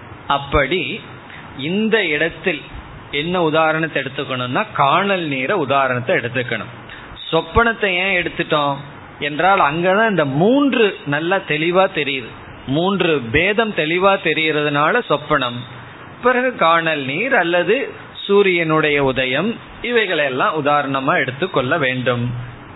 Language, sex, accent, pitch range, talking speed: Tamil, male, native, 130-175 Hz, 100 wpm